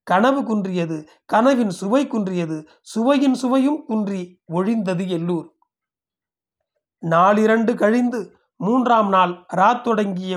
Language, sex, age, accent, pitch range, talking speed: Tamil, male, 30-49, native, 185-230 Hz, 85 wpm